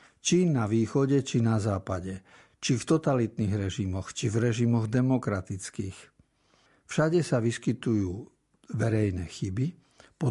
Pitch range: 110-140 Hz